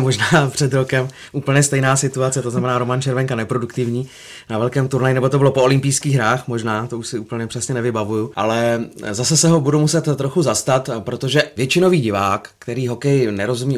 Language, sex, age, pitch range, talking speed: Czech, male, 30-49, 110-140 Hz, 180 wpm